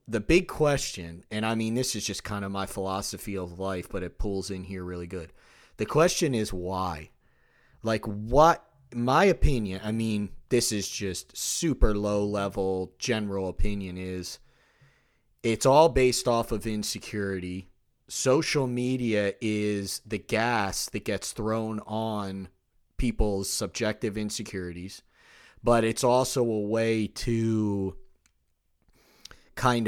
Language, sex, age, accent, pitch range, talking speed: English, male, 30-49, American, 95-115 Hz, 130 wpm